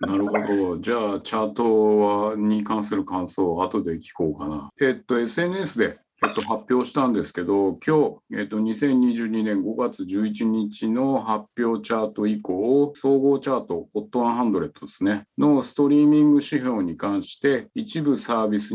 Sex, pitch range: male, 105-140 Hz